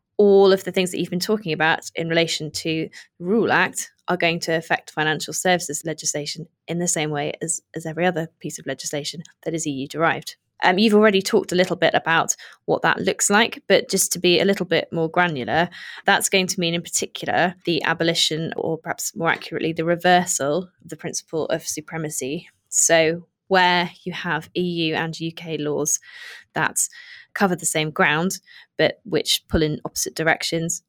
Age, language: 20-39, English